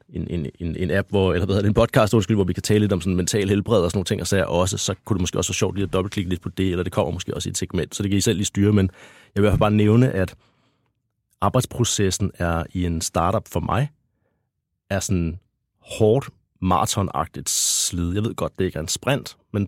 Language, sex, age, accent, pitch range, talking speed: Danish, male, 30-49, native, 90-110 Hz, 255 wpm